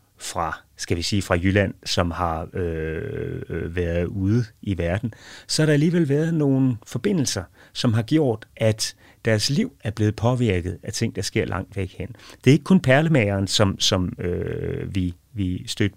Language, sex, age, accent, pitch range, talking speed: Danish, male, 30-49, native, 95-125 Hz, 175 wpm